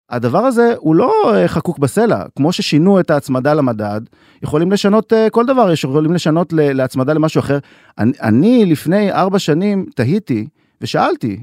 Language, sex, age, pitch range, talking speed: Hebrew, male, 30-49, 115-175 Hz, 145 wpm